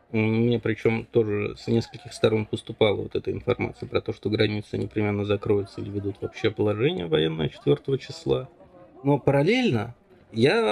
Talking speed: 145 wpm